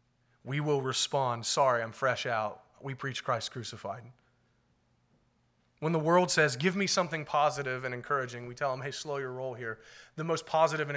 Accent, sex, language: American, male, English